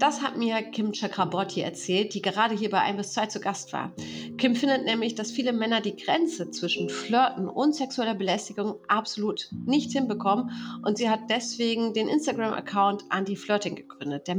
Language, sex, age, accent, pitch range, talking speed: German, female, 40-59, German, 200-245 Hz, 170 wpm